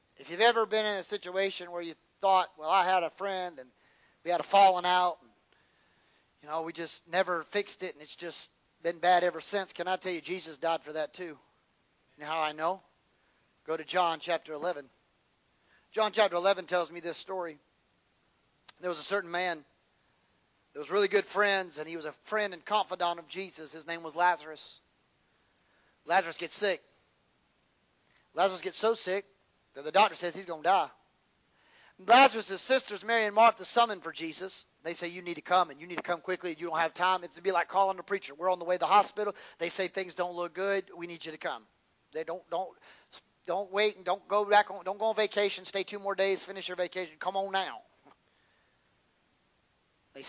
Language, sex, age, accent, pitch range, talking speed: English, male, 40-59, American, 170-200 Hz, 205 wpm